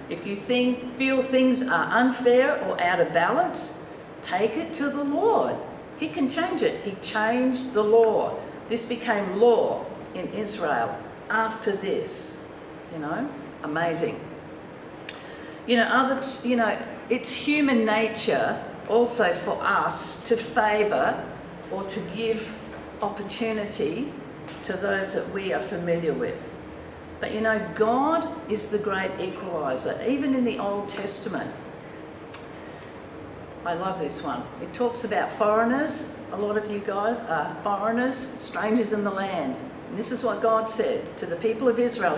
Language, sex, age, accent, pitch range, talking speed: English, female, 50-69, Australian, 215-260 Hz, 145 wpm